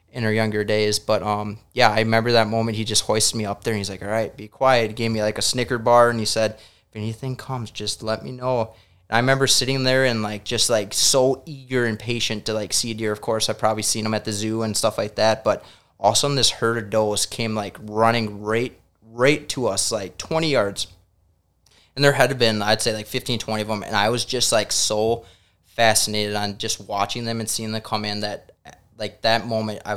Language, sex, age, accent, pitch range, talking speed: English, male, 20-39, American, 105-120 Hz, 240 wpm